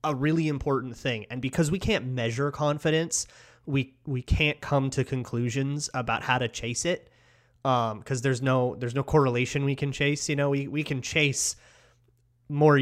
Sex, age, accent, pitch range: male, 30-49, American, 120-150 Hz